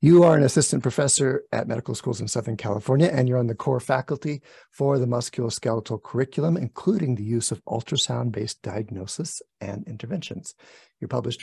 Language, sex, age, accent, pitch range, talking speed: English, male, 50-69, American, 115-145 Hz, 165 wpm